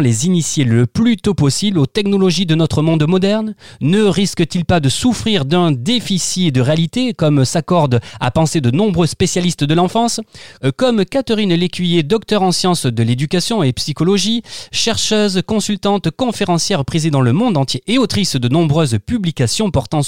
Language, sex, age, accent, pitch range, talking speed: French, male, 30-49, French, 130-200 Hz, 160 wpm